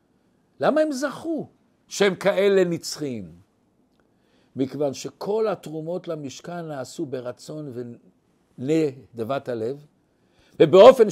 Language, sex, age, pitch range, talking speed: Hebrew, male, 60-79, 155-215 Hz, 90 wpm